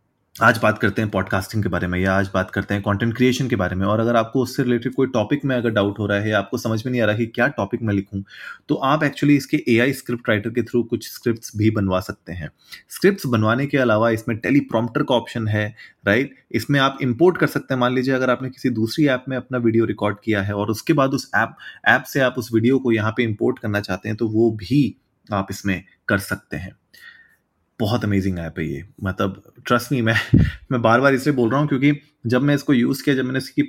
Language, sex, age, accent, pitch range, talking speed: Hindi, male, 30-49, native, 100-130 Hz, 245 wpm